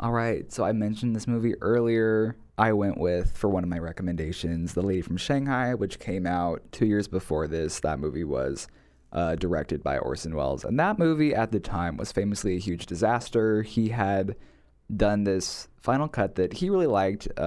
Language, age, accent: English, 20-39, American